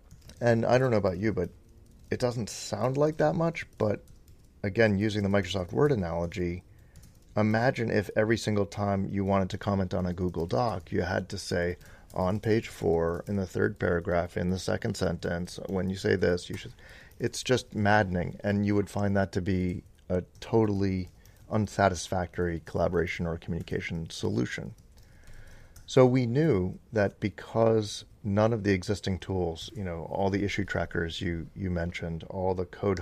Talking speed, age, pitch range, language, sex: 170 wpm, 30-49, 85-105 Hz, English, male